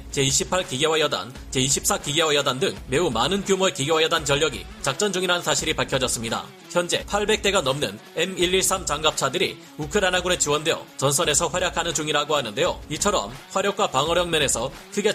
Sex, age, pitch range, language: male, 30-49, 145-190 Hz, Korean